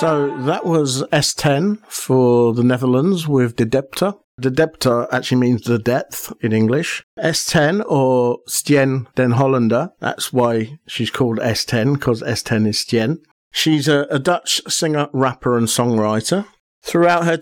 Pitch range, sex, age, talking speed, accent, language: 115-145 Hz, male, 50-69, 145 wpm, British, English